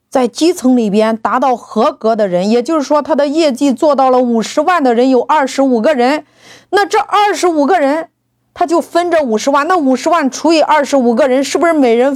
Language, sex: Chinese, female